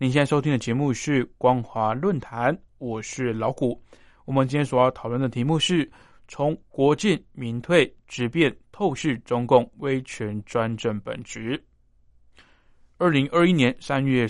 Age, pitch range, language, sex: 20-39, 120-150 Hz, Chinese, male